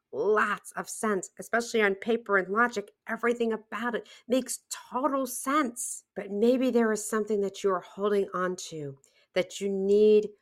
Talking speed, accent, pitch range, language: 155 wpm, American, 175-250 Hz, English